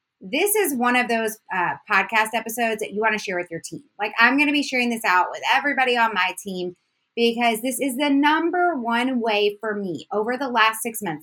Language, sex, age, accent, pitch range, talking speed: English, female, 20-39, American, 200-260 Hz, 230 wpm